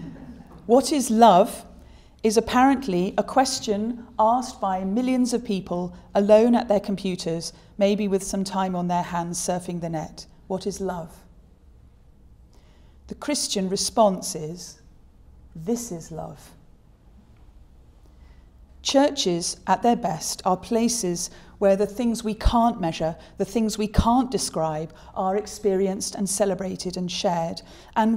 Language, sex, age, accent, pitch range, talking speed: English, female, 40-59, British, 175-225 Hz, 130 wpm